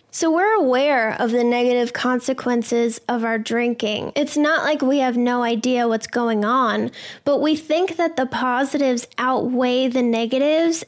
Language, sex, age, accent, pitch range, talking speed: English, female, 10-29, American, 240-285 Hz, 160 wpm